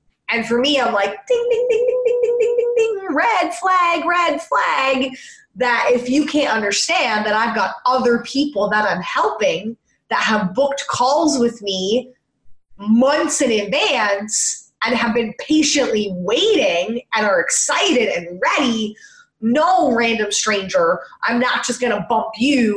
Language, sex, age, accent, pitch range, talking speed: English, female, 20-39, American, 215-285 Hz, 155 wpm